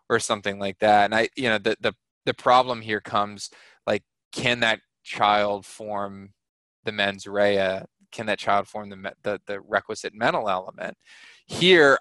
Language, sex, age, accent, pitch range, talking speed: English, male, 20-39, American, 100-120 Hz, 165 wpm